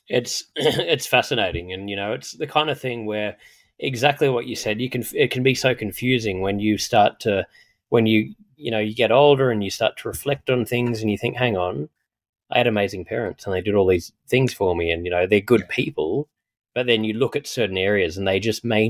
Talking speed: 240 wpm